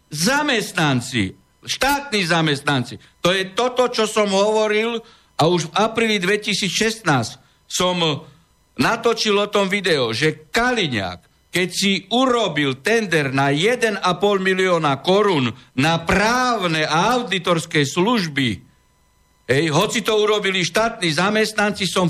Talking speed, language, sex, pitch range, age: 110 wpm, Slovak, male, 155-215 Hz, 60-79